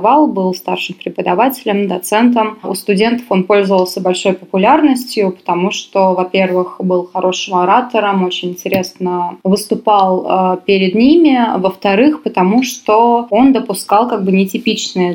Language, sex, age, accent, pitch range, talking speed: Russian, female, 20-39, native, 185-230 Hz, 115 wpm